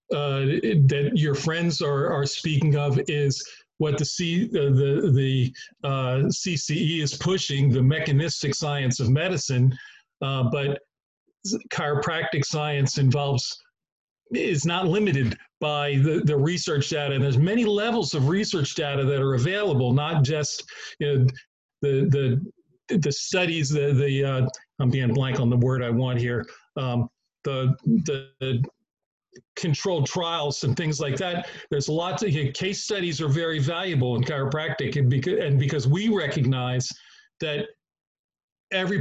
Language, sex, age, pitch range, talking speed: English, male, 40-59, 135-155 Hz, 145 wpm